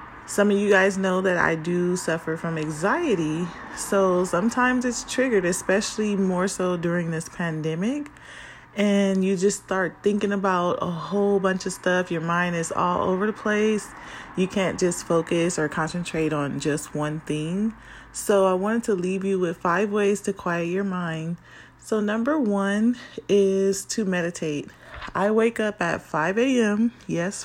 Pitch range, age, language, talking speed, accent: 165-200 Hz, 30-49, English, 165 wpm, American